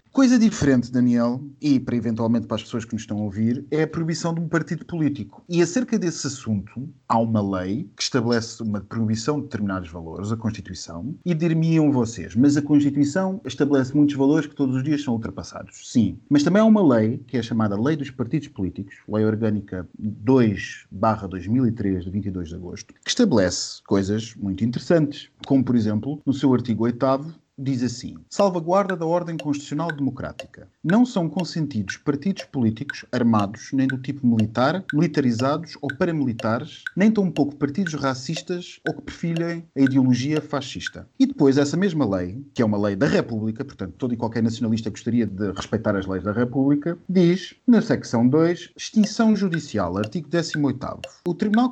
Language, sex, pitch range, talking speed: Portuguese, male, 115-165 Hz, 175 wpm